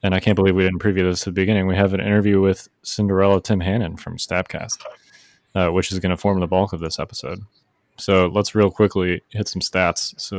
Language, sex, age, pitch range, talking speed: English, male, 20-39, 90-105 Hz, 230 wpm